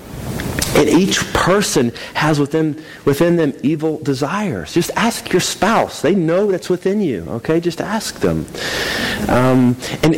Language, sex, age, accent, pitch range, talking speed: English, male, 40-59, American, 110-180 Hz, 140 wpm